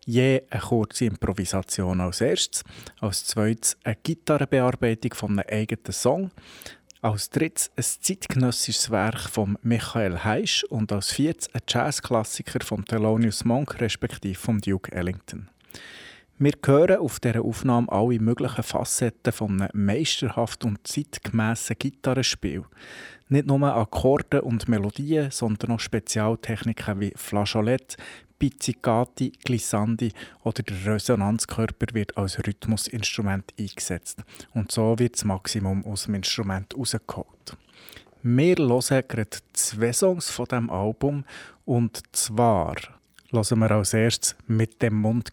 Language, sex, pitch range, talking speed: German, male, 105-125 Hz, 125 wpm